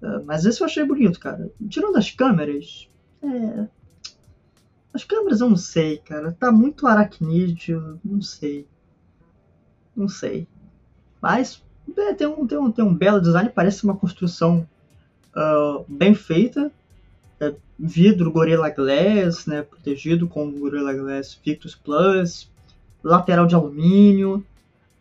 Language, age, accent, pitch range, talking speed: Portuguese, 20-39, Brazilian, 155-210 Hz, 115 wpm